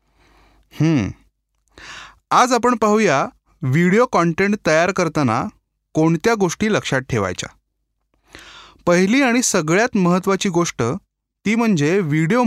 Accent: native